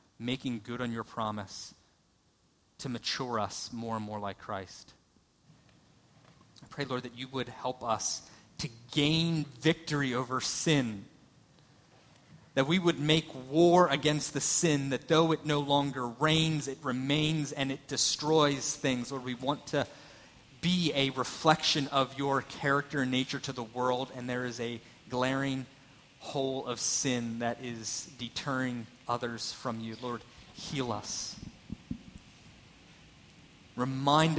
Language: English